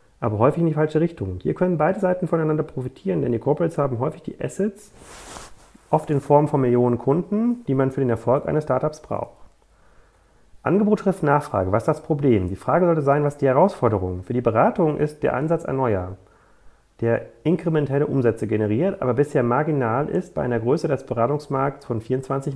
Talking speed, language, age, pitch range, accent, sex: 185 wpm, German, 30-49, 120-165 Hz, German, male